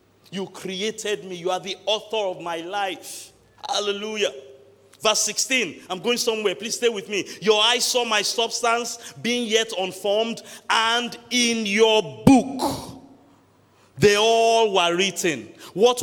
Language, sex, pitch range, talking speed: English, male, 195-245 Hz, 140 wpm